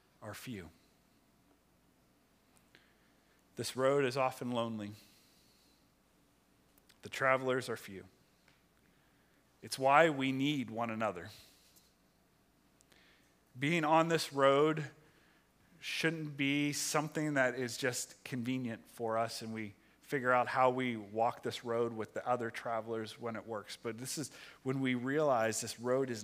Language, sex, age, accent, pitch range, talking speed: English, male, 30-49, American, 110-135 Hz, 125 wpm